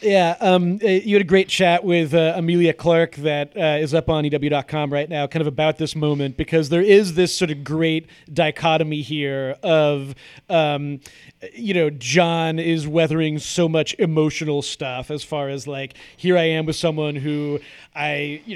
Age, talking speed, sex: 30-49, 180 wpm, male